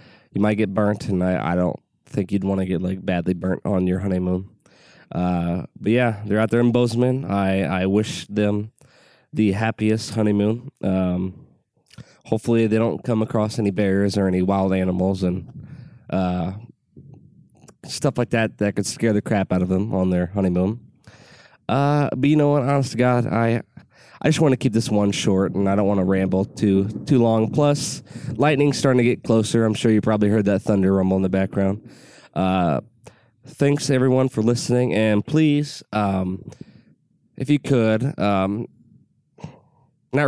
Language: English